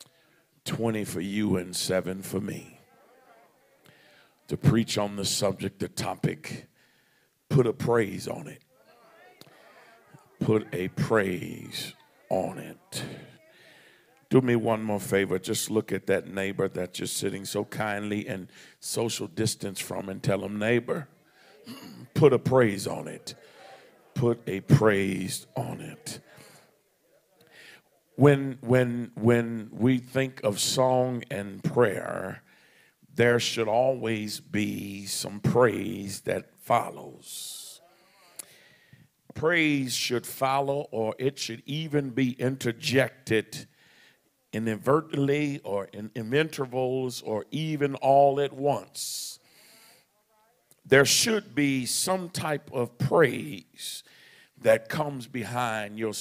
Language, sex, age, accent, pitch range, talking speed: English, male, 50-69, American, 110-140 Hz, 110 wpm